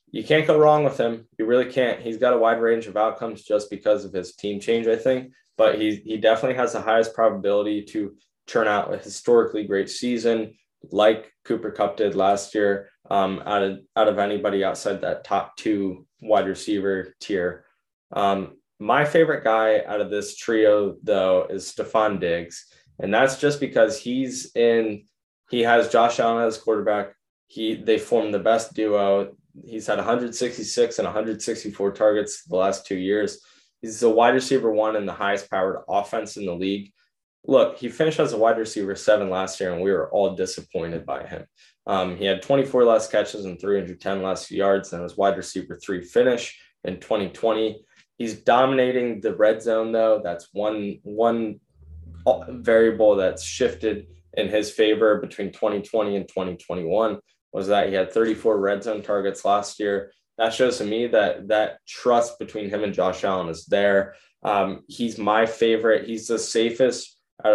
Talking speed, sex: 175 wpm, male